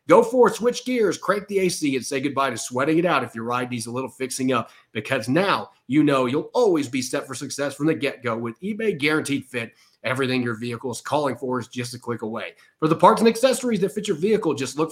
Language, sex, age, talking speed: English, male, 30-49, 250 wpm